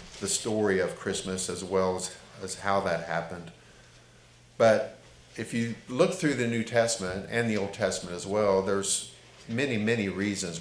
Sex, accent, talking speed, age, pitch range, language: male, American, 165 wpm, 50-69, 95-110 Hz, English